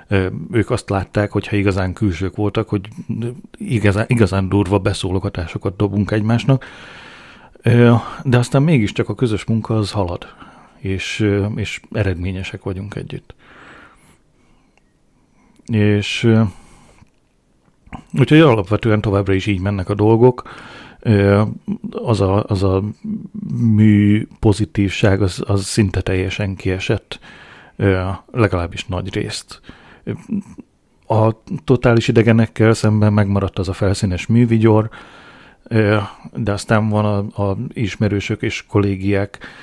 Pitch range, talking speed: 100-115 Hz, 100 wpm